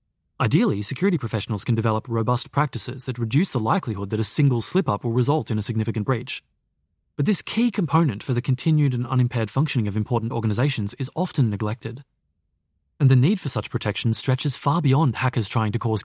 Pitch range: 110-140 Hz